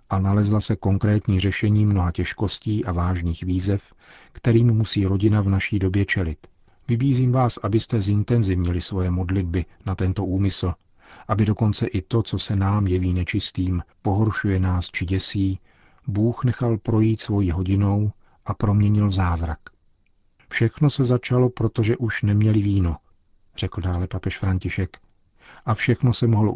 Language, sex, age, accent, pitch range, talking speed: Czech, male, 40-59, native, 95-110 Hz, 140 wpm